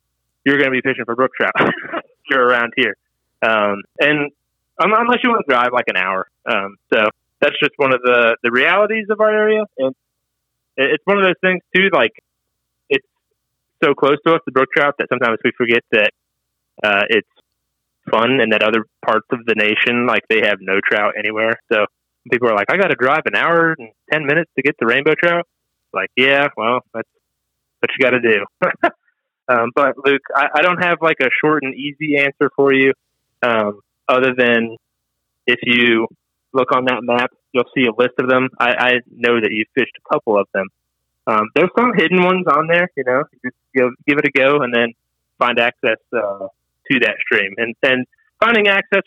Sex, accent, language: male, American, English